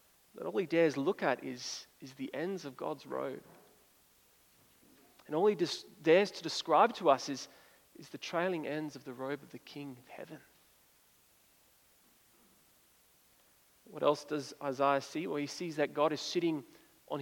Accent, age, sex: Australian, 30-49, male